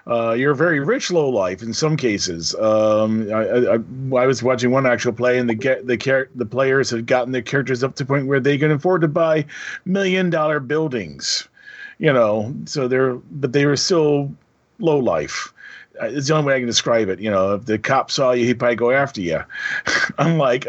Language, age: English, 40-59